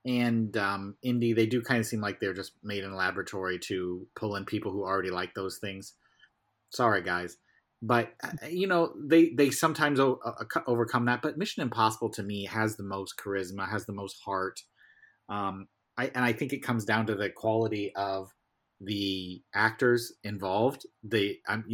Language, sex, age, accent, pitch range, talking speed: English, male, 30-49, American, 105-135 Hz, 180 wpm